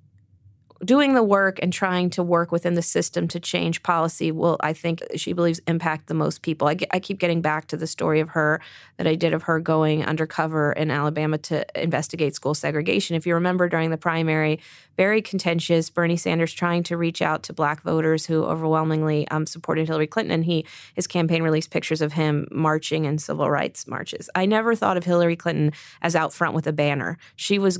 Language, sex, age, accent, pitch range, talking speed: English, female, 30-49, American, 155-170 Hz, 205 wpm